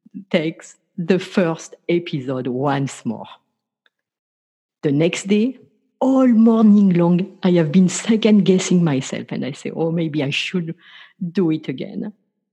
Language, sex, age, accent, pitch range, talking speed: English, female, 50-69, French, 165-210 Hz, 130 wpm